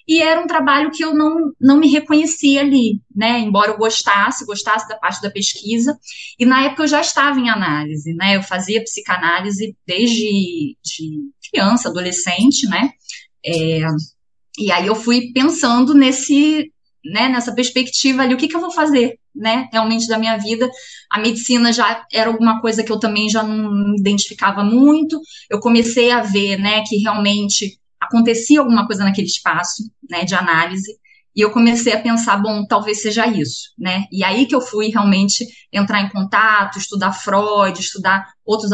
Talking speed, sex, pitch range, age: 165 wpm, female, 200-255 Hz, 20-39